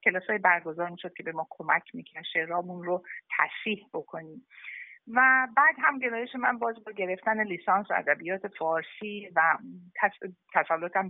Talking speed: 140 wpm